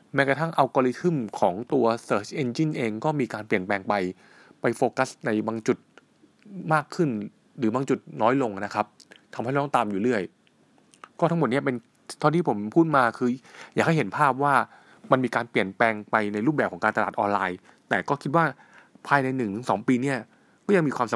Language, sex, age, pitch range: Thai, male, 20-39, 115-155 Hz